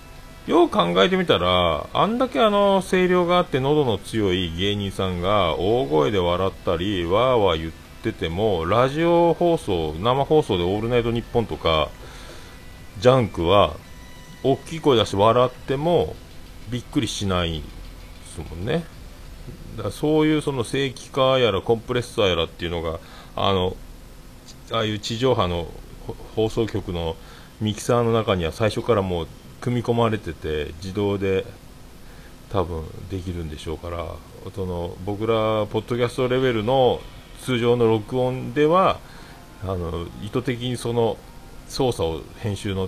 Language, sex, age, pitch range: Japanese, male, 40-59, 85-125 Hz